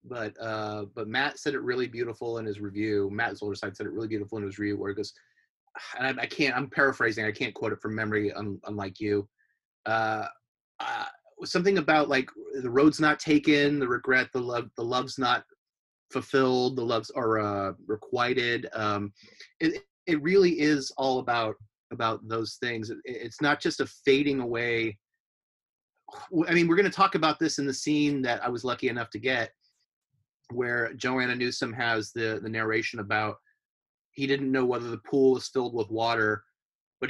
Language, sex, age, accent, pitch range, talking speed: English, male, 30-49, American, 110-140 Hz, 185 wpm